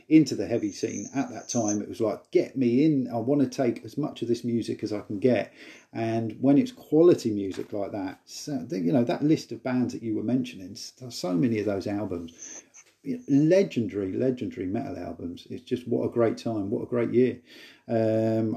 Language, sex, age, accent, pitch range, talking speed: English, male, 40-59, British, 100-125 Hz, 210 wpm